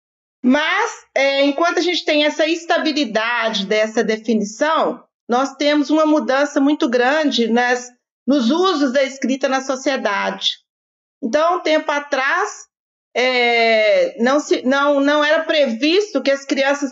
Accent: Brazilian